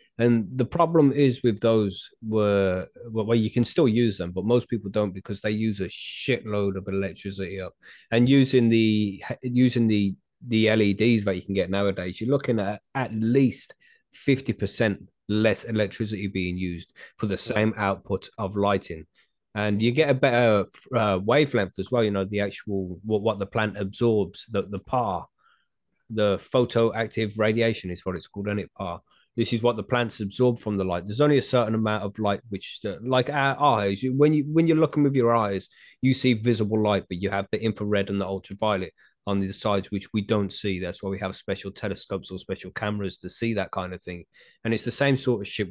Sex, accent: male, British